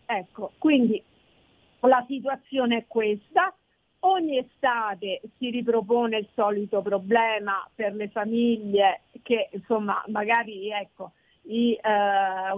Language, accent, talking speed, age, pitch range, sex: Italian, native, 105 wpm, 50-69, 205-260 Hz, female